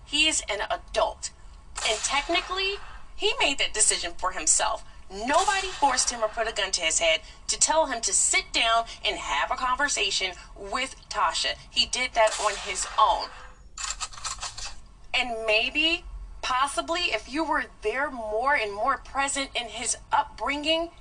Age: 30-49